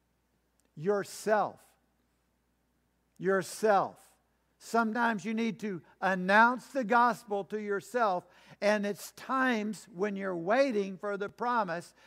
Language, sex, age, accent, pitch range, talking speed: English, male, 60-79, American, 185-245 Hz, 100 wpm